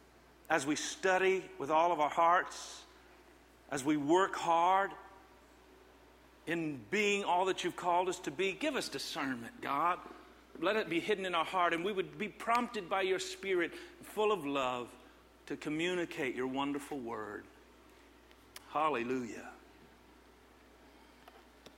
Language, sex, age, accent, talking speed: English, male, 50-69, American, 135 wpm